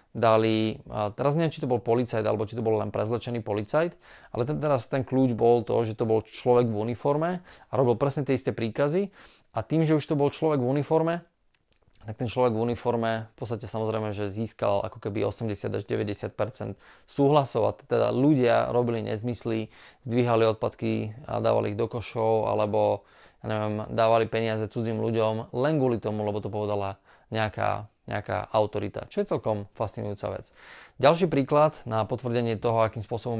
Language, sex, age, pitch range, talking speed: Slovak, male, 20-39, 110-130 Hz, 175 wpm